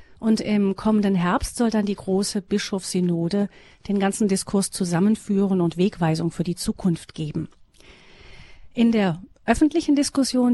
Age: 40-59